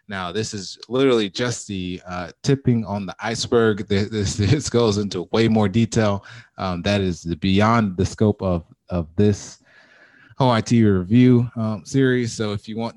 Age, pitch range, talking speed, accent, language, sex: 20-39, 85-110 Hz, 160 wpm, American, English, male